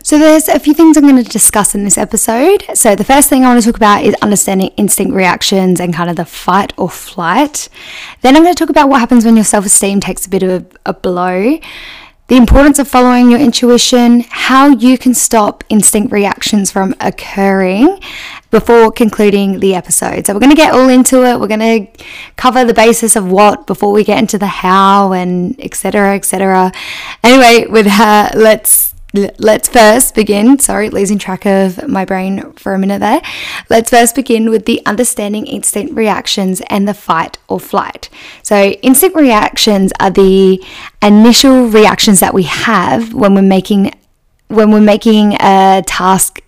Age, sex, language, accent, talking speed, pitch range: 10-29, female, English, Australian, 185 wpm, 200-250 Hz